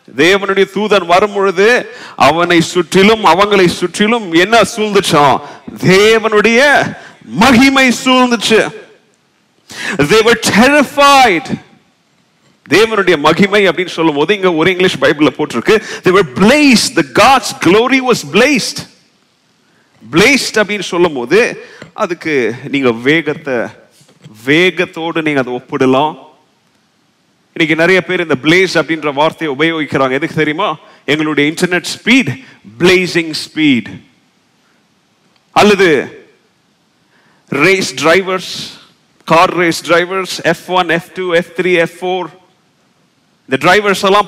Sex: male